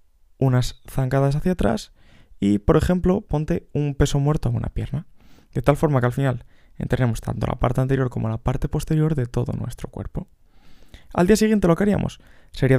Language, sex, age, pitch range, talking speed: Spanish, male, 20-39, 115-165 Hz, 190 wpm